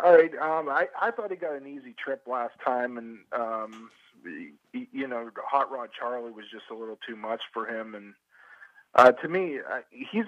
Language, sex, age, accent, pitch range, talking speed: English, male, 40-59, American, 120-155 Hz, 210 wpm